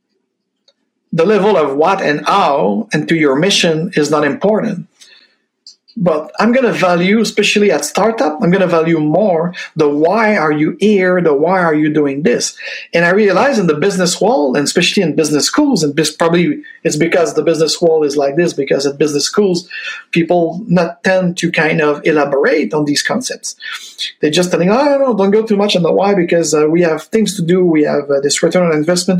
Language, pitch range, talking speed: English, 165-210 Hz, 205 wpm